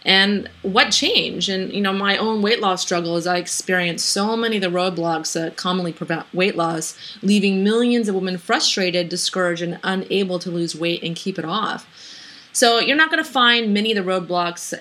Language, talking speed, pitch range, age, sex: English, 200 wpm, 170-205 Hz, 30-49, female